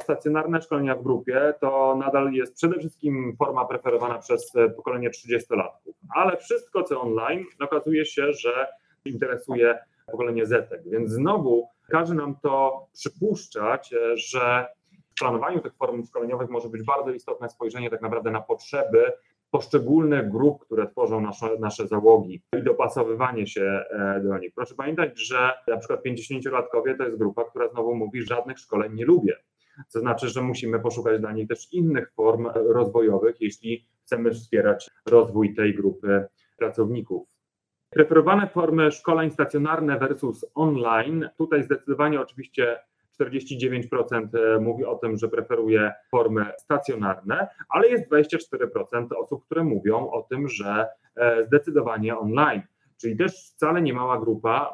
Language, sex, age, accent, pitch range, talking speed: Polish, male, 30-49, native, 115-165 Hz, 140 wpm